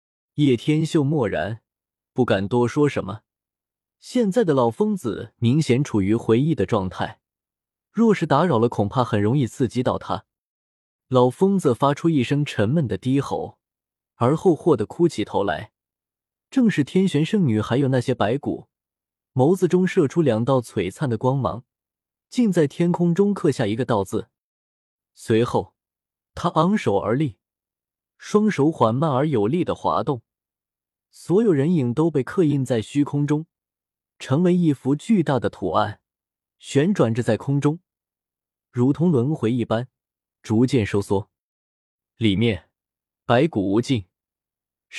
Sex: male